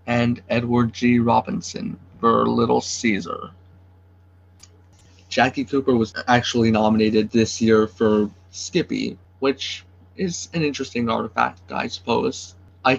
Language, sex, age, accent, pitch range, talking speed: English, male, 20-39, American, 105-120 Hz, 110 wpm